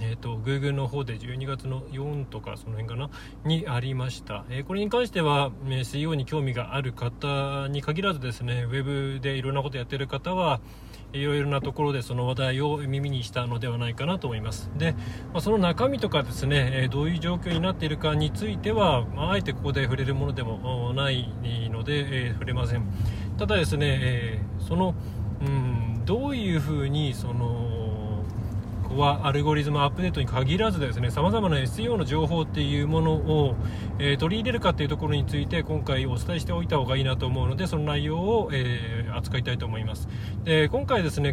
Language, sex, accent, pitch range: Japanese, male, native, 115-150 Hz